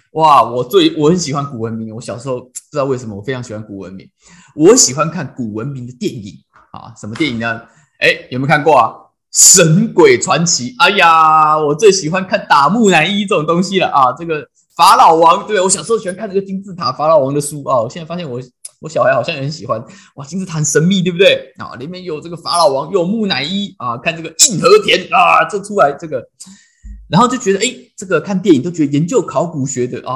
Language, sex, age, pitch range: Chinese, male, 20-39, 125-195 Hz